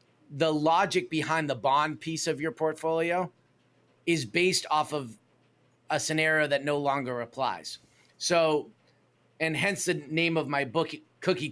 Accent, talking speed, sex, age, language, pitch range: American, 145 wpm, male, 30-49, English, 140-170 Hz